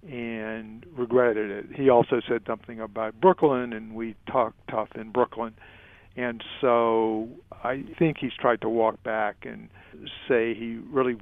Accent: American